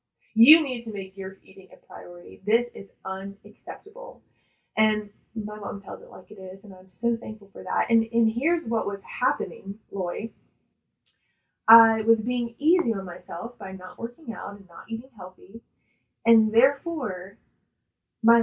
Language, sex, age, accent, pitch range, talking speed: English, female, 10-29, American, 195-235 Hz, 160 wpm